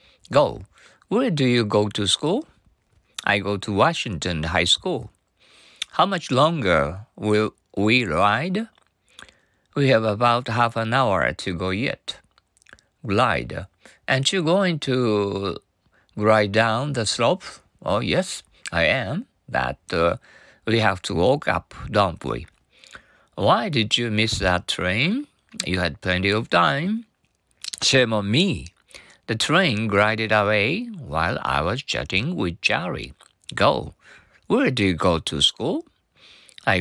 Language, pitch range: Japanese, 95-135 Hz